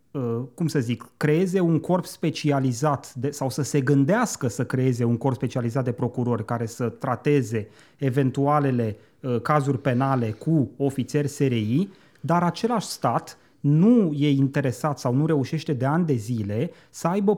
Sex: male